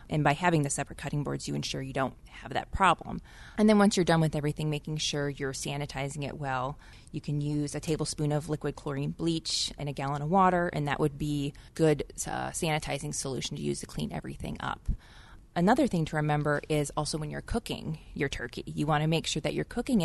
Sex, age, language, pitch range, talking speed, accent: female, 20-39, English, 145-165 Hz, 220 wpm, American